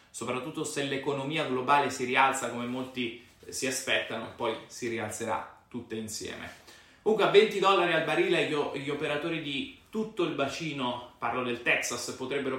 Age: 30-49